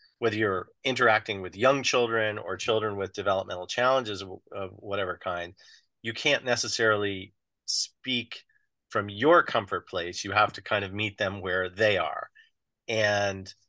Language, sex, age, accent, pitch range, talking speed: English, male, 30-49, American, 100-125 Hz, 150 wpm